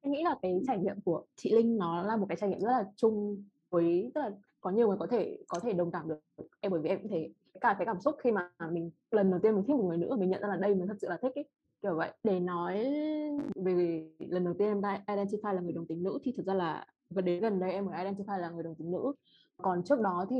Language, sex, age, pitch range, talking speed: Vietnamese, female, 20-39, 185-225 Hz, 290 wpm